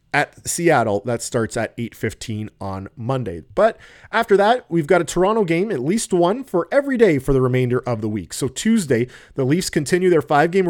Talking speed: 195 wpm